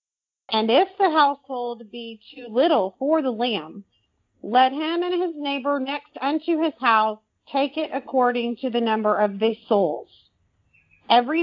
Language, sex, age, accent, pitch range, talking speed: English, female, 40-59, American, 215-280 Hz, 150 wpm